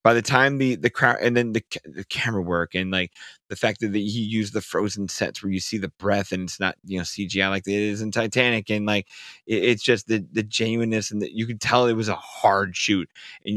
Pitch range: 105-120 Hz